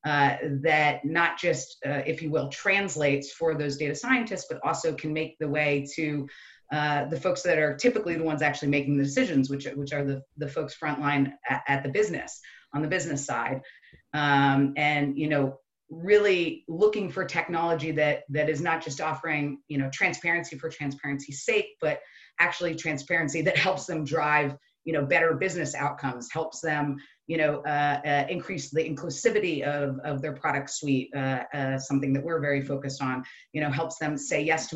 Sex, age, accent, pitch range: female, 30-49, American, 140-165 Hz